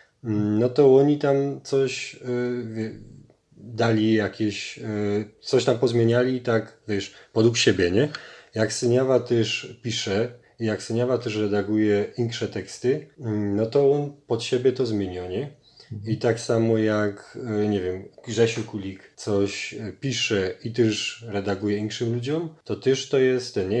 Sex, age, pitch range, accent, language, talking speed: male, 30-49, 105-120 Hz, native, Polish, 140 wpm